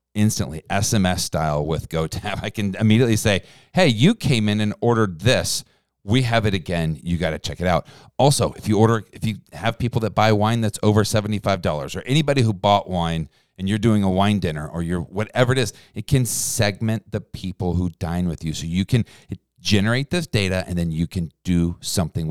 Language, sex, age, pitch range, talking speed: English, male, 40-59, 85-110 Hz, 205 wpm